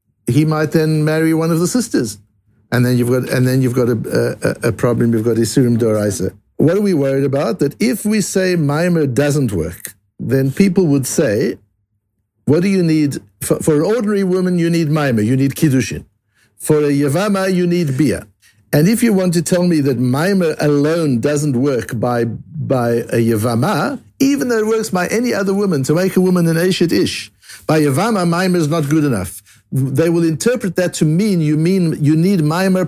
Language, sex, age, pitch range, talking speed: English, male, 60-79, 125-175 Hz, 200 wpm